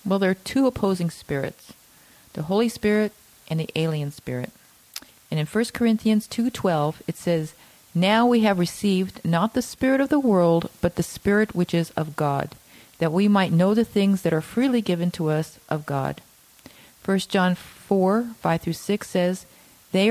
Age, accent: 40-59, American